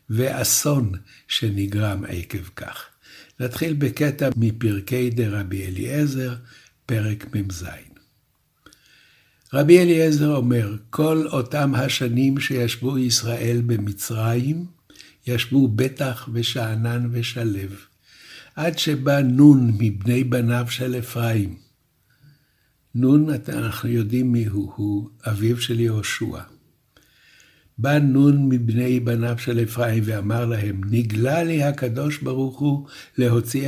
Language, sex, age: Hebrew, male, 60-79